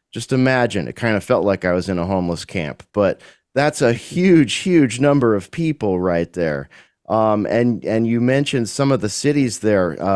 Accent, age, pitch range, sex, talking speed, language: American, 30-49, 90-125 Hz, male, 200 wpm, English